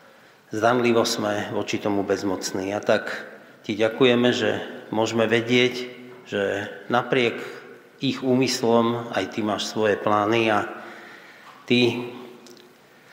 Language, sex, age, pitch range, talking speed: Slovak, male, 40-59, 105-120 Hz, 105 wpm